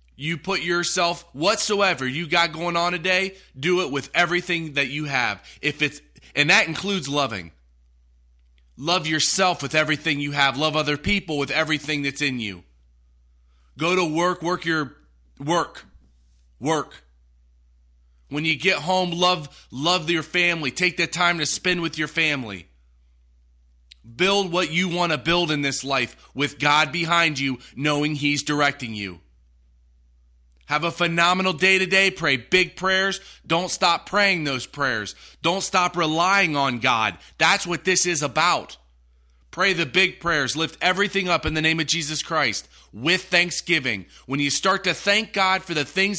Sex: male